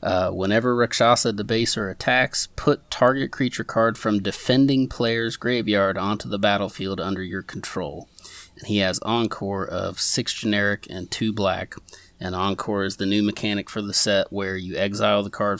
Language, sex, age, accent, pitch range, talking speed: English, male, 30-49, American, 95-115 Hz, 165 wpm